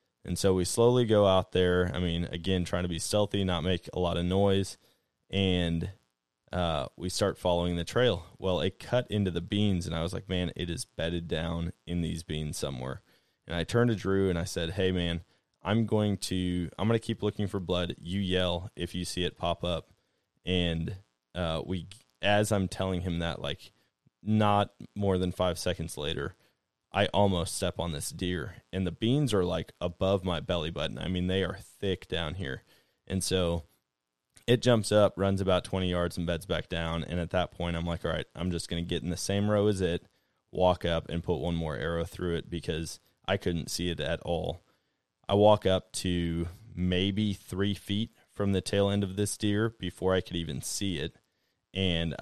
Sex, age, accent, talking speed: male, 20-39, American, 205 wpm